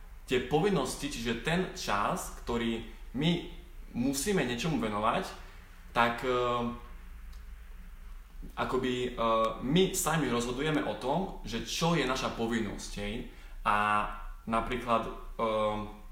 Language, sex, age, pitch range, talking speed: Slovak, male, 20-39, 110-135 Hz, 90 wpm